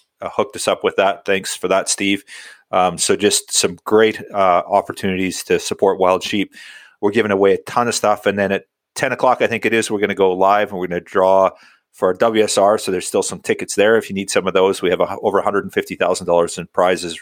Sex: male